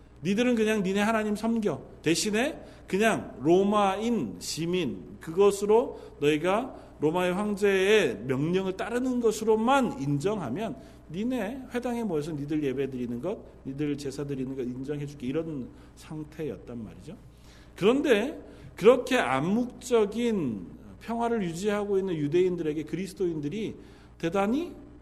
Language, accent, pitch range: Korean, native, 150-230 Hz